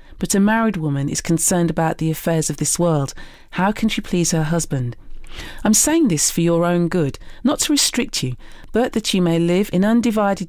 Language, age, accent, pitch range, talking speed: English, 40-59, British, 155-210 Hz, 205 wpm